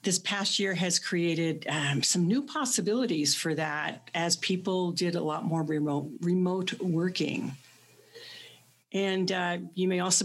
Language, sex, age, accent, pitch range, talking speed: English, female, 60-79, American, 160-200 Hz, 145 wpm